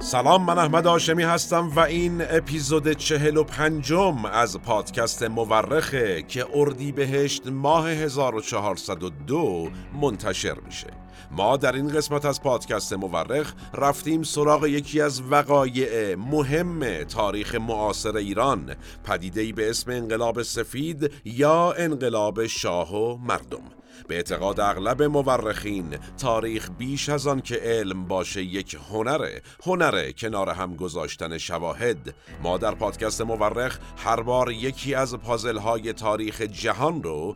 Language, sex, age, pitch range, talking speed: Persian, male, 50-69, 105-145 Hz, 120 wpm